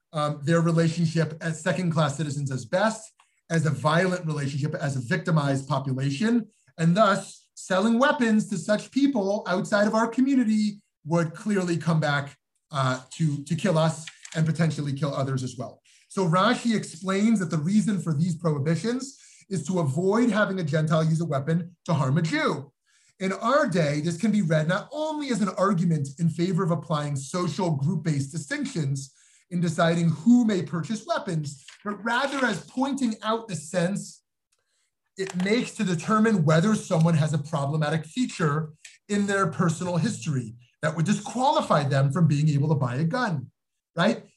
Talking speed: 170 wpm